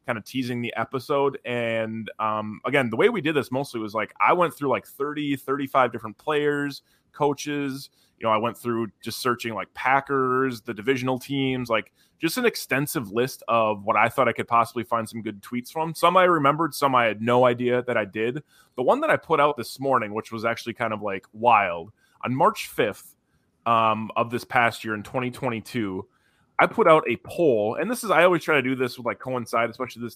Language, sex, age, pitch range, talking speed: English, male, 20-39, 110-135 Hz, 215 wpm